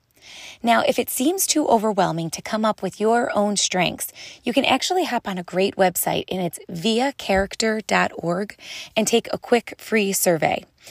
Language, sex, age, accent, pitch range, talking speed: English, female, 20-39, American, 195-255 Hz, 165 wpm